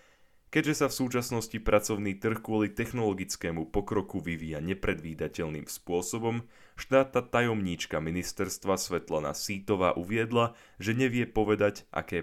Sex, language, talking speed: male, Slovak, 110 wpm